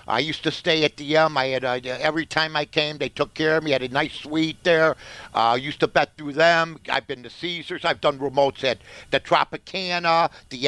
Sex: male